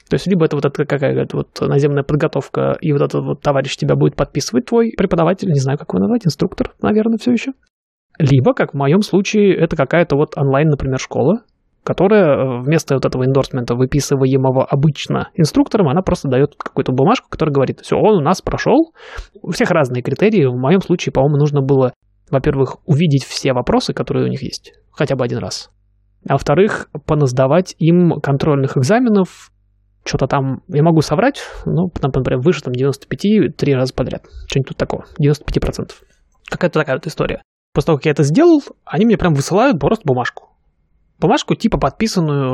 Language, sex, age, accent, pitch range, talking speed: Russian, male, 20-39, native, 135-175 Hz, 175 wpm